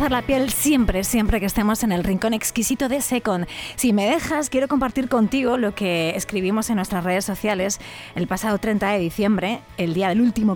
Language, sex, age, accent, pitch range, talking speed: Spanish, female, 20-39, Spanish, 180-235 Hz, 195 wpm